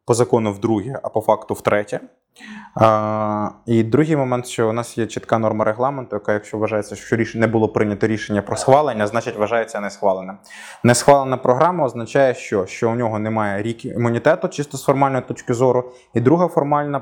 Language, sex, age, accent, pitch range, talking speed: Ukrainian, male, 20-39, native, 115-155 Hz, 180 wpm